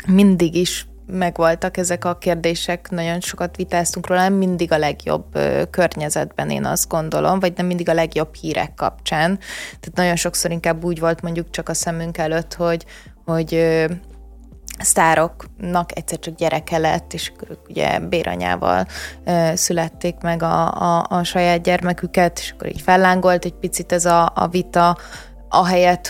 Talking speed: 150 wpm